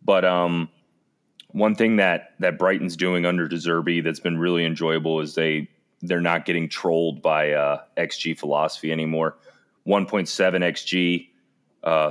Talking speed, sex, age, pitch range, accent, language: 150 wpm, male, 30-49, 80-95 Hz, American, English